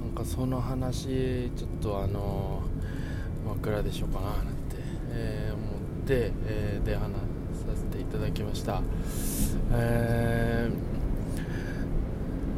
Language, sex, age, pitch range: Japanese, male, 20-39, 105-125 Hz